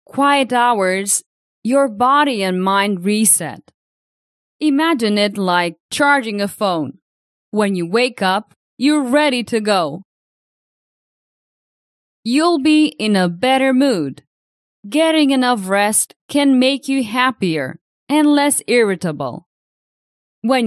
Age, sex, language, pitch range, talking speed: 20-39, female, English, 200-275 Hz, 110 wpm